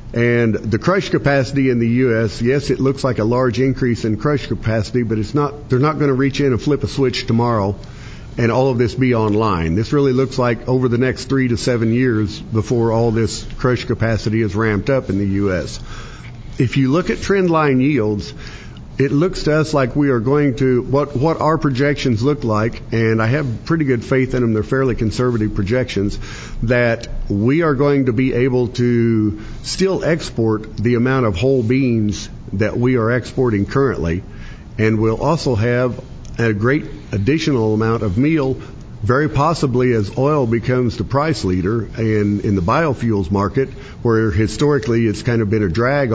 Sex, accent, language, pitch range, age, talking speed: male, American, English, 110-135 Hz, 50-69, 185 wpm